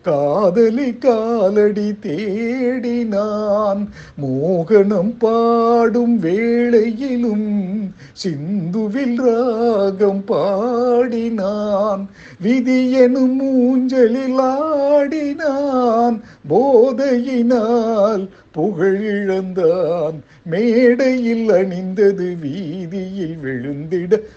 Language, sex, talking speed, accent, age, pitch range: Tamil, male, 45 wpm, native, 50-69, 170-235 Hz